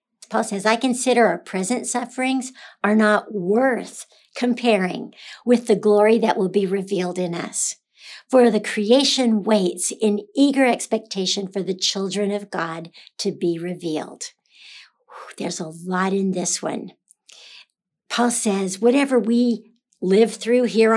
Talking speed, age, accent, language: 135 wpm, 60-79, American, English